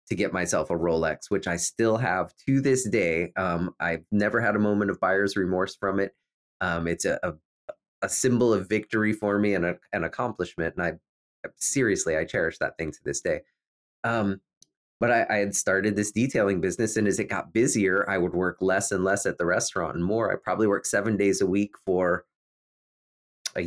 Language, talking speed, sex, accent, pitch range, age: English, 200 wpm, male, American, 85-110 Hz, 30-49